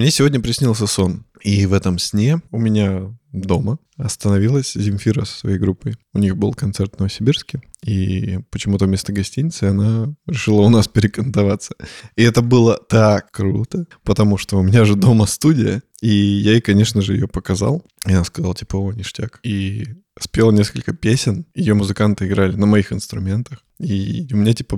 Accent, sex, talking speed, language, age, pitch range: native, male, 165 wpm, Russian, 20-39, 100-120 Hz